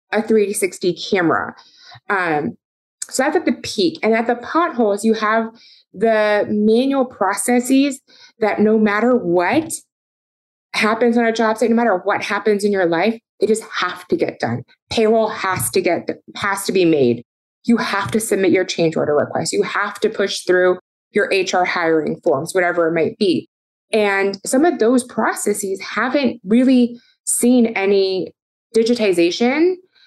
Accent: American